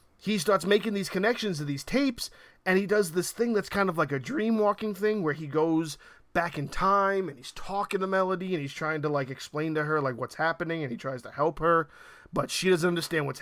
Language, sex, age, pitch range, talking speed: English, male, 30-49, 145-190 Hz, 235 wpm